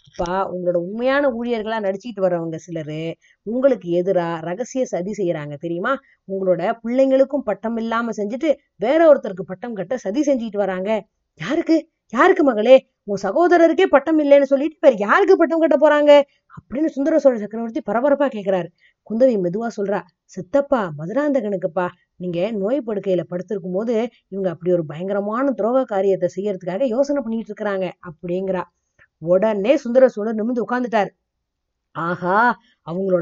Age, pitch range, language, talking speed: 20-39, 185-280 Hz, Tamil, 115 wpm